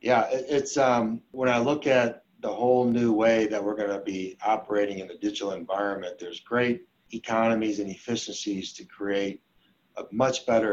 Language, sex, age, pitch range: English, male, 60-79, 100-115 Hz